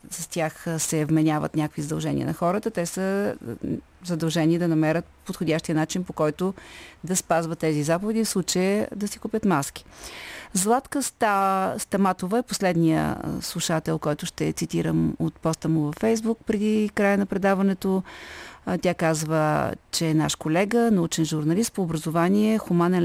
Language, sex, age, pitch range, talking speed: Bulgarian, female, 40-59, 160-200 Hz, 145 wpm